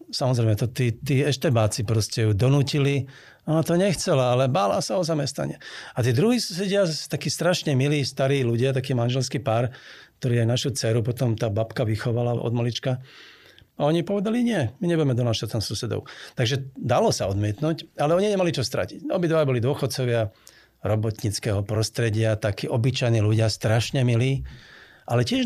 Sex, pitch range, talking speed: male, 110-135 Hz, 155 wpm